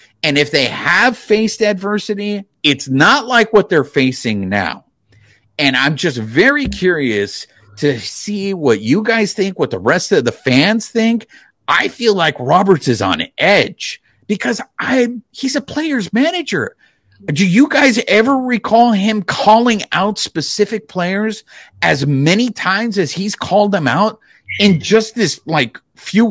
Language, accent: English, American